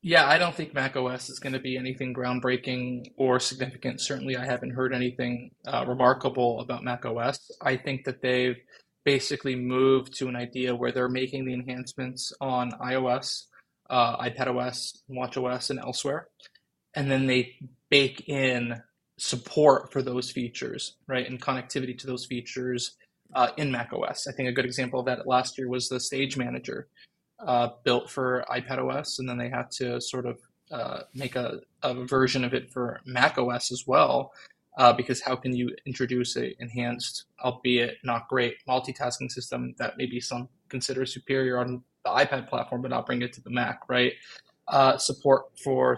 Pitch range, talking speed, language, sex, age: 125-130 Hz, 170 wpm, English, male, 20-39